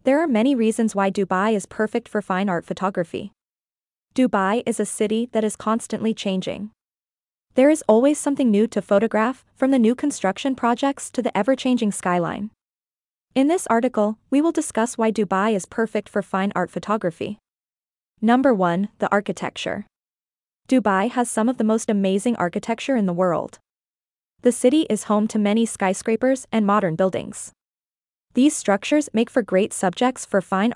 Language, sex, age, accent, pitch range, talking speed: English, female, 20-39, American, 190-245 Hz, 160 wpm